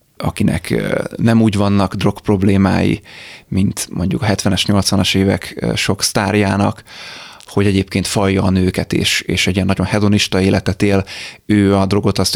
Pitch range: 95-105 Hz